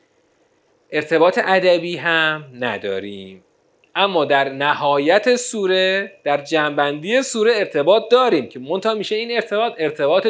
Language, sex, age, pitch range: Persian, male, 30-49, 170-235 Hz